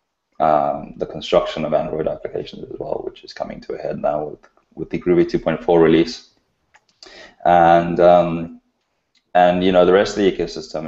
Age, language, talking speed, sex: 20-39, English, 170 wpm, male